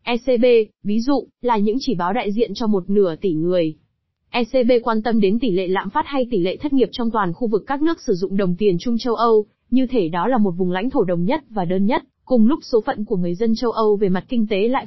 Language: Vietnamese